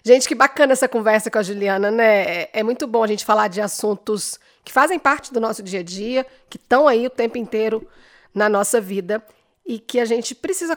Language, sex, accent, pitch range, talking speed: Portuguese, female, Brazilian, 210-255 Hz, 215 wpm